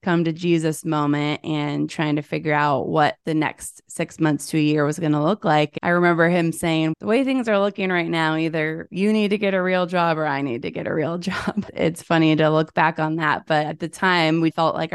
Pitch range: 150-170 Hz